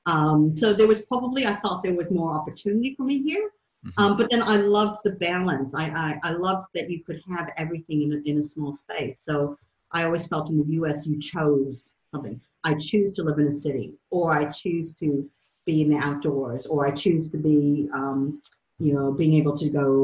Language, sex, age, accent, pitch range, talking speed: English, female, 40-59, American, 140-175 Hz, 220 wpm